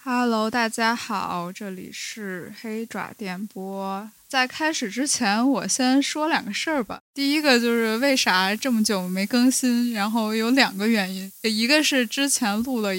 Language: Chinese